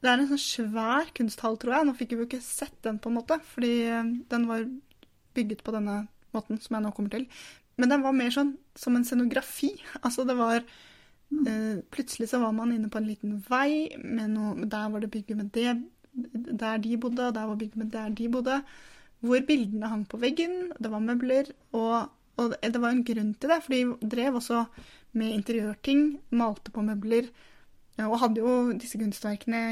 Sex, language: female, English